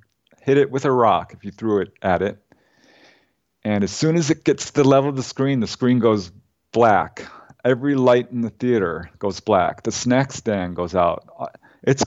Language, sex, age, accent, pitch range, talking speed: English, male, 40-59, American, 110-150 Hz, 200 wpm